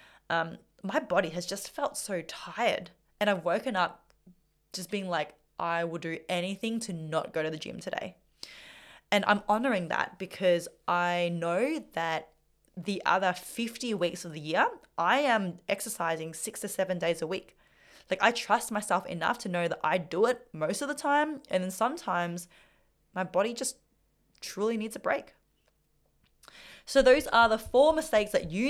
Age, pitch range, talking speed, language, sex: 20-39, 175-225 Hz, 175 wpm, English, female